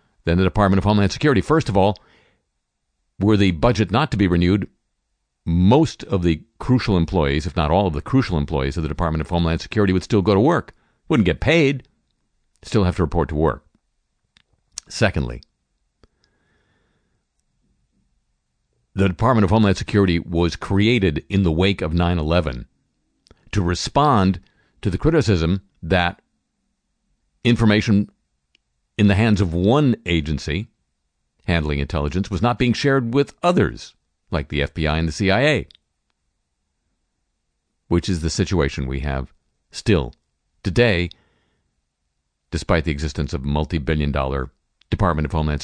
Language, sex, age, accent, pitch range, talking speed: English, male, 50-69, American, 75-105 Hz, 140 wpm